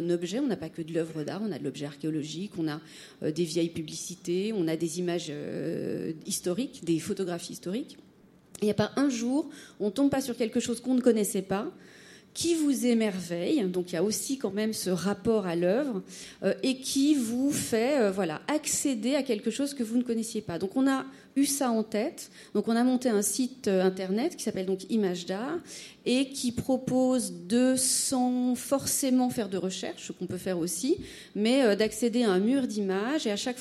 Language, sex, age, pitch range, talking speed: French, female, 40-59, 190-250 Hz, 210 wpm